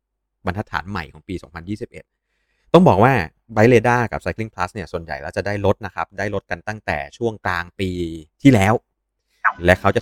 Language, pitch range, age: Thai, 95-120 Hz, 20-39